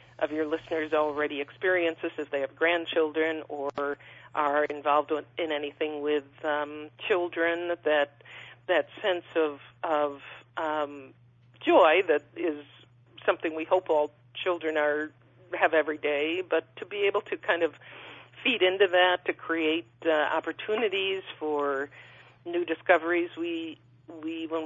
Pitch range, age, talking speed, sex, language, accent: 145-165 Hz, 50-69, 135 wpm, female, English, American